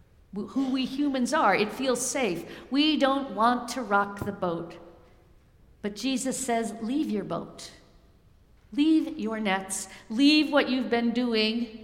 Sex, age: female, 50-69